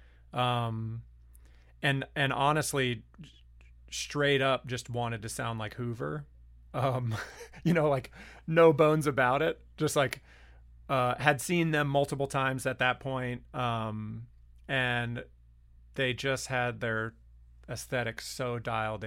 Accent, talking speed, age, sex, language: American, 125 wpm, 30-49, male, English